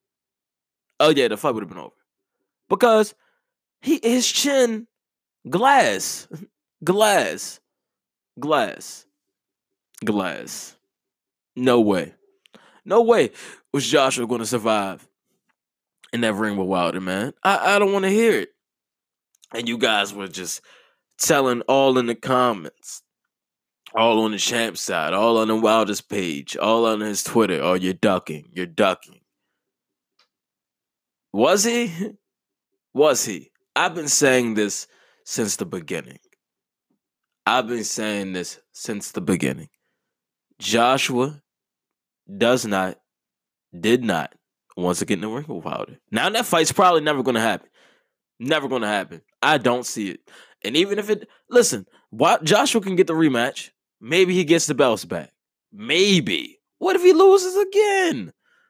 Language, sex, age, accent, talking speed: English, male, 20-39, American, 140 wpm